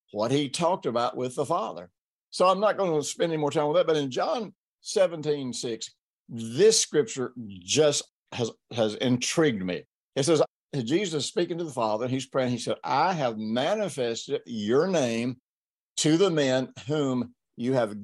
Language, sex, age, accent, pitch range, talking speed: English, male, 60-79, American, 120-160 Hz, 175 wpm